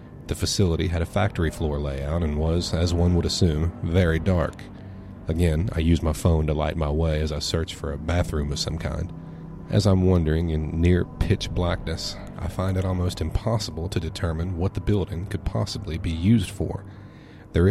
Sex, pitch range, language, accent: male, 80-95 Hz, English, American